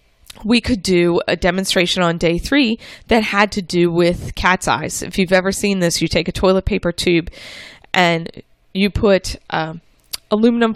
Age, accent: 20-39, American